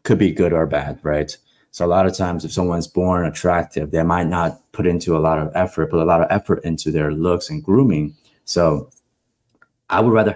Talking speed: 220 wpm